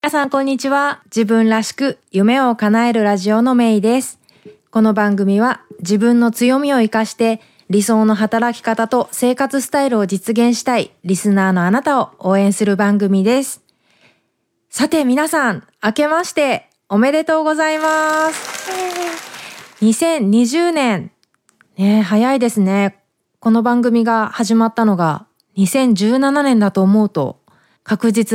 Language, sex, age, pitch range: Japanese, female, 20-39, 195-245 Hz